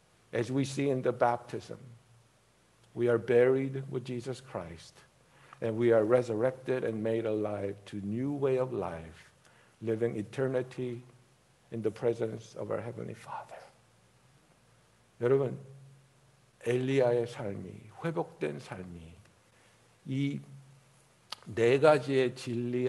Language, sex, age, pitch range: Korean, male, 60-79, 115-160 Hz